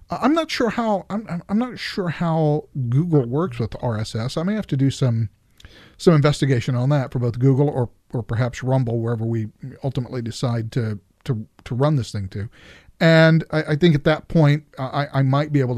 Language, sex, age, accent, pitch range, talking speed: English, male, 40-59, American, 120-155 Hz, 200 wpm